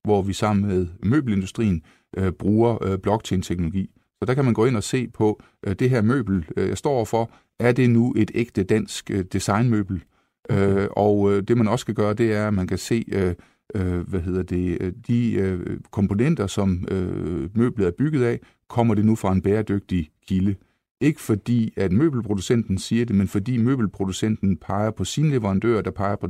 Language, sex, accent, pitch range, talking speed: Danish, male, native, 95-115 Hz, 170 wpm